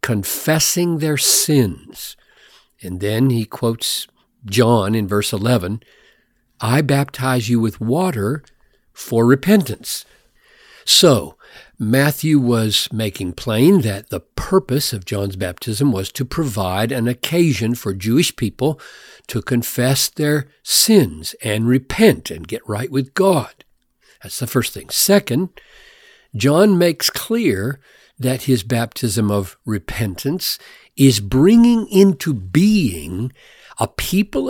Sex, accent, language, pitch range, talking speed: male, American, English, 115-155 Hz, 115 wpm